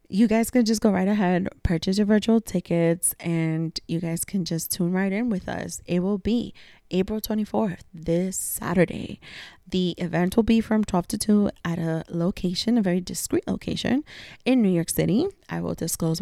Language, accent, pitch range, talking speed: English, American, 165-220 Hz, 185 wpm